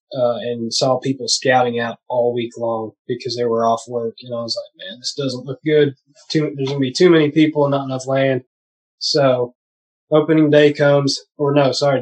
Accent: American